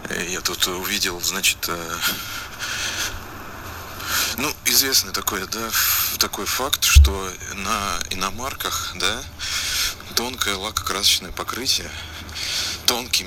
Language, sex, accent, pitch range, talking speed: Russian, male, native, 90-105 Hz, 90 wpm